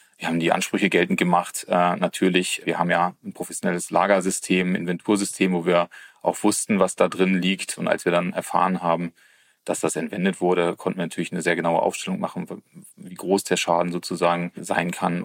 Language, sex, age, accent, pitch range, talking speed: German, male, 30-49, German, 85-95 Hz, 190 wpm